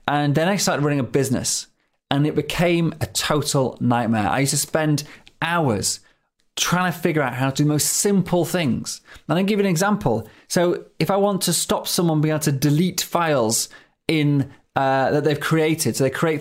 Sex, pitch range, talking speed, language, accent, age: male, 140-180 Hz, 200 wpm, English, British, 30-49